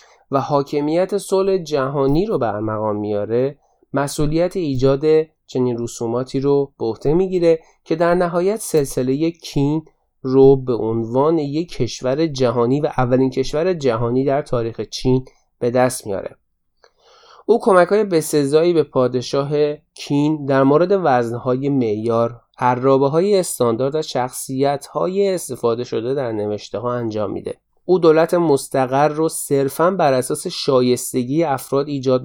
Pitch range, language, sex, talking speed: 125-160 Hz, Persian, male, 130 wpm